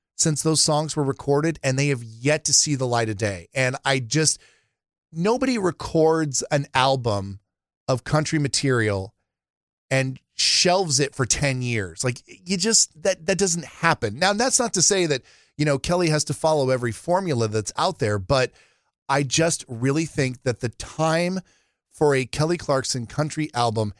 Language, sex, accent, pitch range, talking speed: English, male, American, 125-165 Hz, 175 wpm